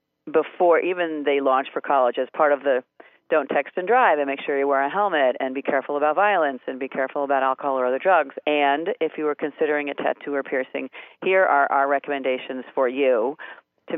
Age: 40-59